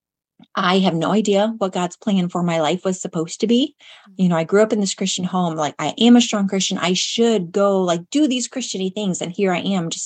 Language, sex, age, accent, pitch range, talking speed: English, female, 30-49, American, 165-205 Hz, 250 wpm